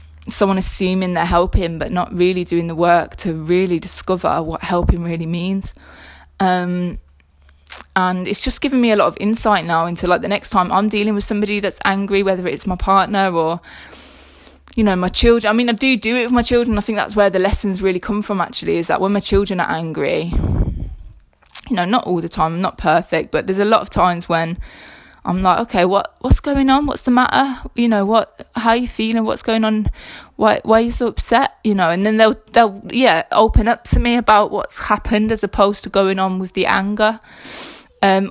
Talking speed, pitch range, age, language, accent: 215 wpm, 180-225 Hz, 20-39, English, British